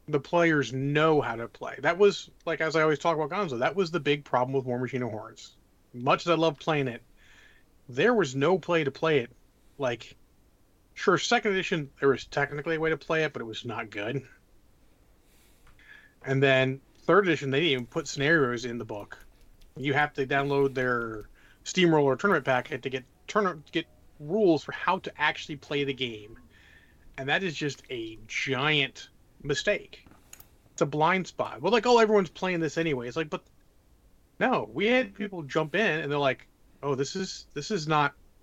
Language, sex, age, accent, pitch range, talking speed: English, male, 30-49, American, 130-170 Hz, 190 wpm